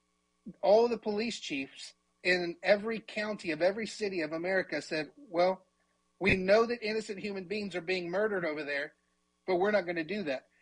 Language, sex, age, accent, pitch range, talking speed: English, male, 40-59, American, 175-205 Hz, 180 wpm